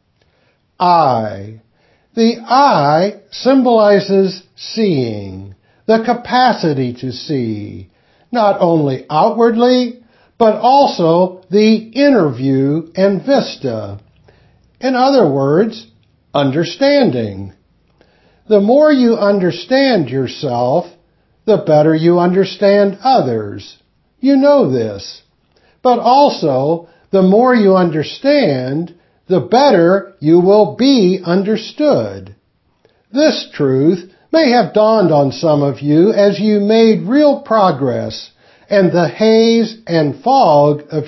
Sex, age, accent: male, 60-79, American